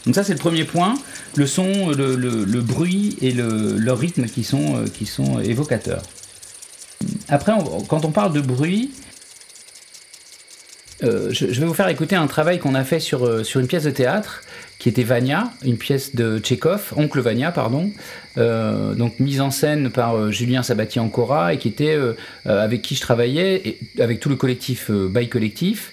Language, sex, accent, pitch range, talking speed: French, male, French, 120-155 Hz, 180 wpm